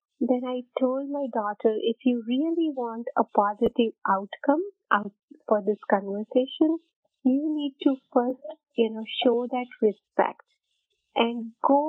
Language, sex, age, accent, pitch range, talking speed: English, female, 30-49, Indian, 225-285 Hz, 130 wpm